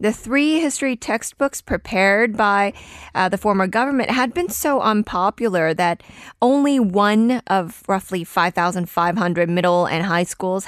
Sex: female